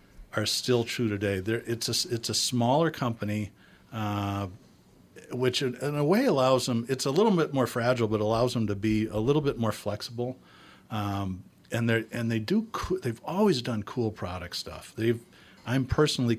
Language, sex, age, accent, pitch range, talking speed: English, male, 50-69, American, 100-120 Hz, 175 wpm